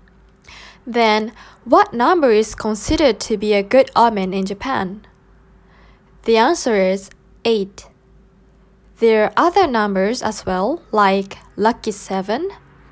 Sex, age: female, 10-29